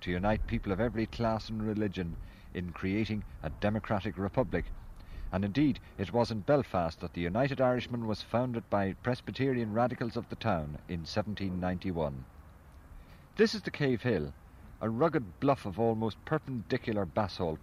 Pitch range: 85-115 Hz